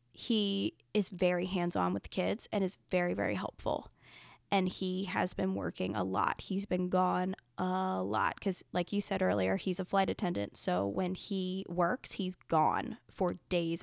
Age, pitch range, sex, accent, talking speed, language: 10-29, 175-210 Hz, female, American, 180 wpm, English